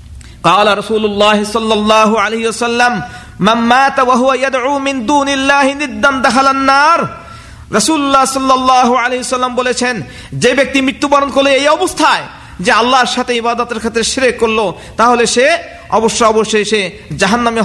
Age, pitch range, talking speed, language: 50-69, 220-275 Hz, 35 wpm, Bengali